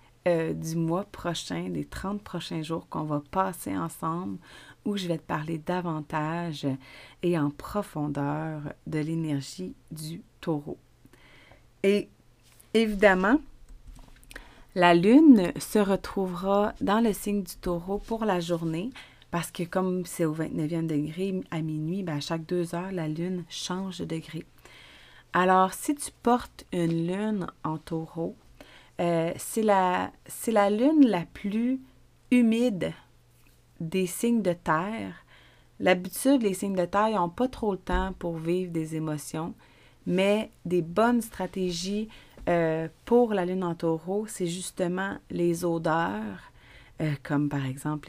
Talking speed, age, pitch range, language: 135 wpm, 30-49, 160-195 Hz, French